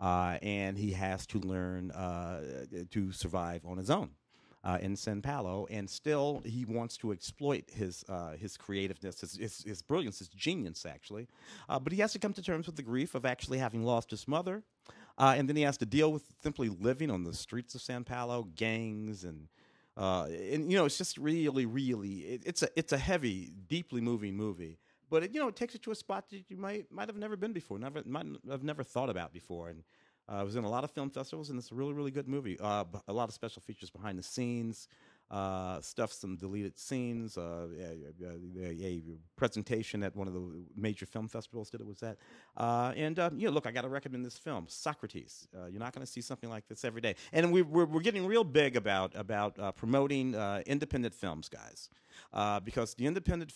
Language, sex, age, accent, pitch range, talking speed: English, male, 40-59, American, 95-140 Hz, 225 wpm